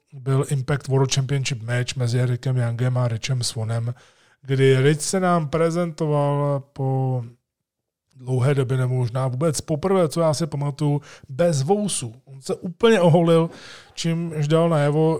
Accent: native